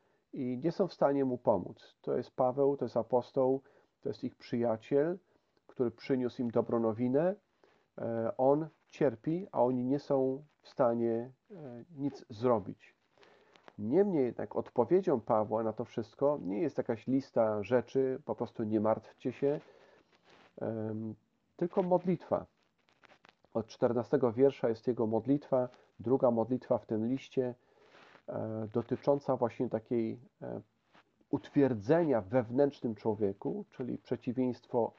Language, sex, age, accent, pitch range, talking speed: Polish, male, 40-59, native, 115-140 Hz, 120 wpm